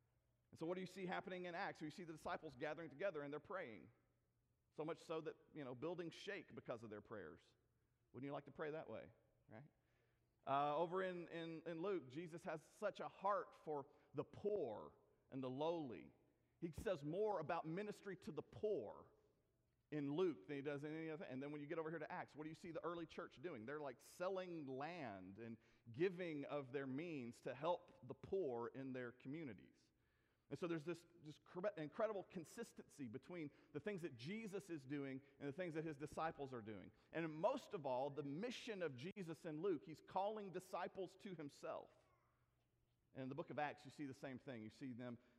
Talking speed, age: 205 wpm, 40-59